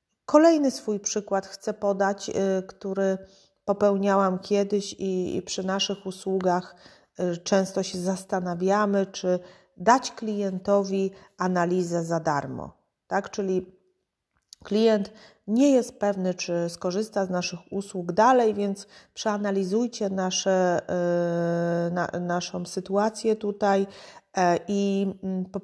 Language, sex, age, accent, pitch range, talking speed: Polish, female, 30-49, native, 180-215 Hz, 95 wpm